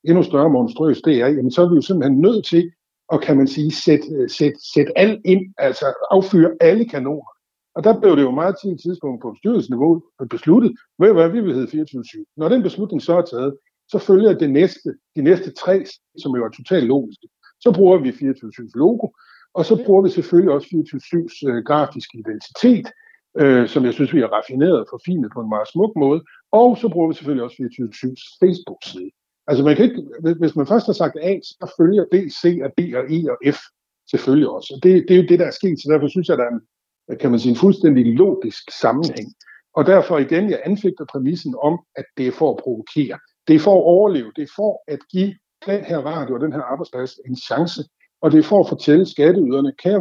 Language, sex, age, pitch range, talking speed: Danish, male, 60-79, 140-190 Hz, 215 wpm